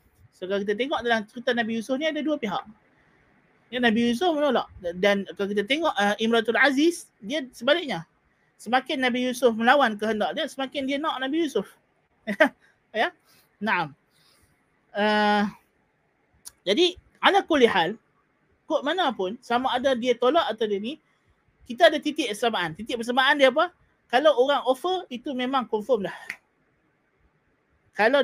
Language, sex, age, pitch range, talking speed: Malay, male, 30-49, 220-300 Hz, 145 wpm